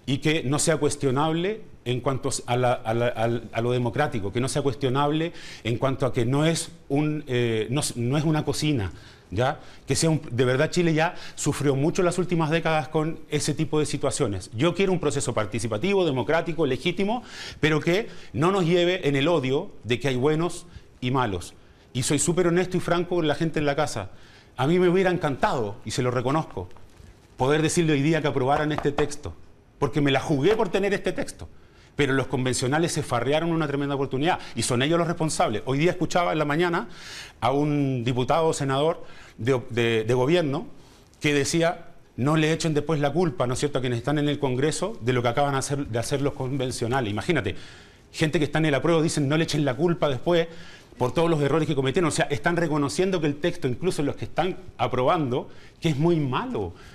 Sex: male